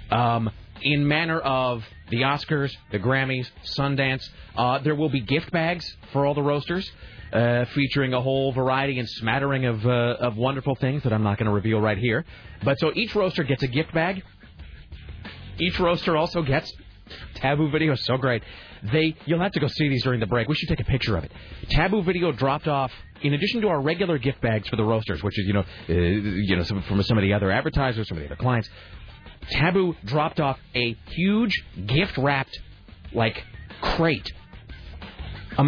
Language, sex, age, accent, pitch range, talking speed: English, male, 30-49, American, 110-165 Hz, 195 wpm